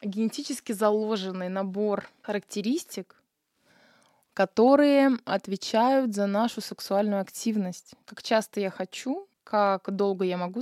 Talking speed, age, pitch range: 100 wpm, 20-39, 185-230 Hz